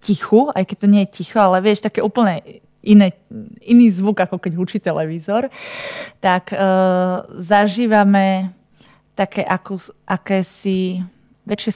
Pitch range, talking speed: 185-215 Hz, 110 wpm